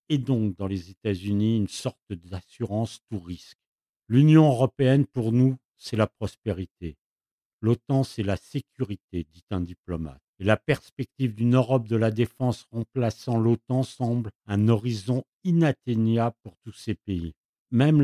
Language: French